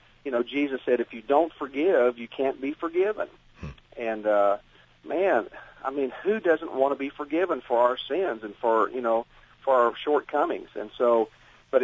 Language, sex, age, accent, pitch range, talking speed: English, male, 50-69, American, 120-170 Hz, 180 wpm